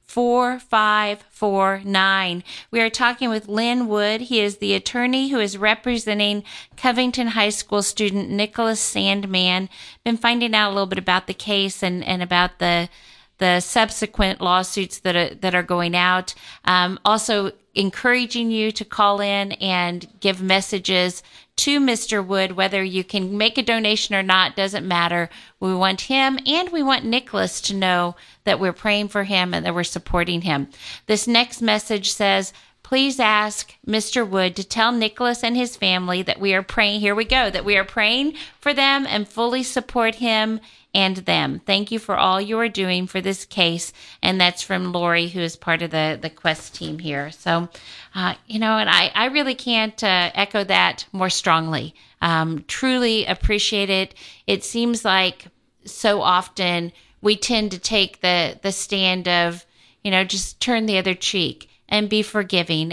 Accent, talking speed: American, 170 wpm